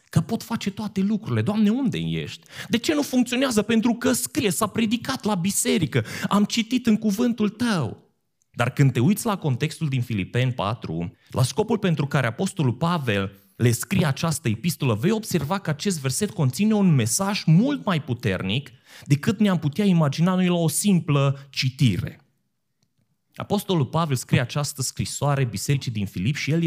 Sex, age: male, 30-49